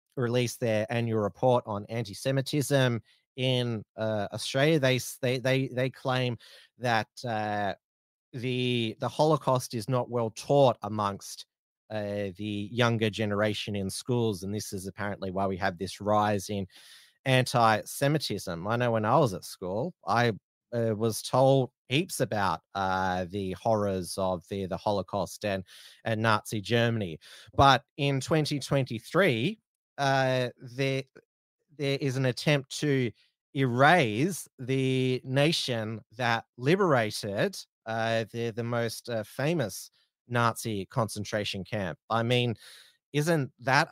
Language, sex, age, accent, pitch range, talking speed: English, male, 30-49, Australian, 110-135 Hz, 130 wpm